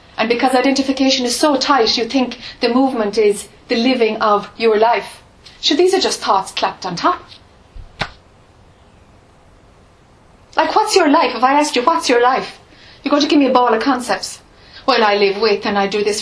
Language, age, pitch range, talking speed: English, 30-49, 205-275 Hz, 190 wpm